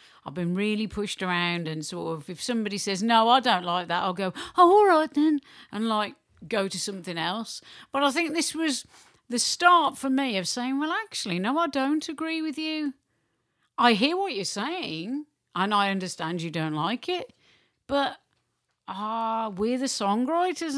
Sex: female